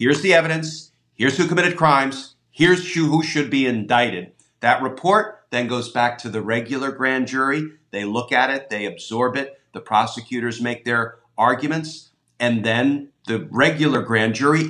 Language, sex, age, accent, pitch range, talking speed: English, male, 50-69, American, 120-150 Hz, 165 wpm